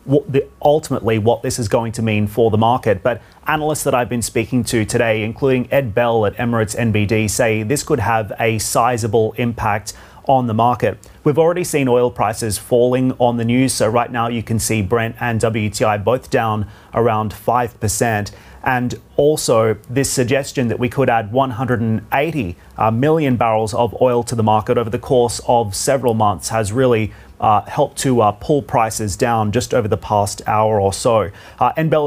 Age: 30-49